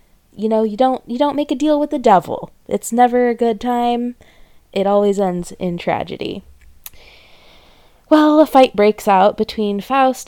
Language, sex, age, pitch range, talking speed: English, female, 20-39, 185-240 Hz, 170 wpm